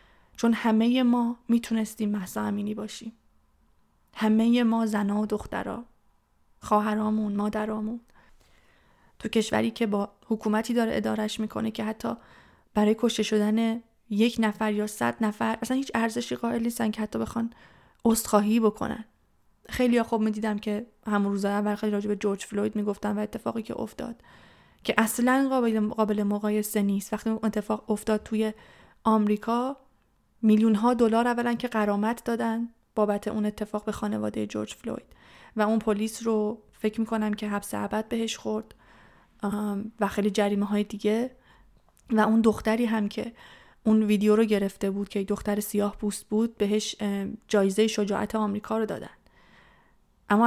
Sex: female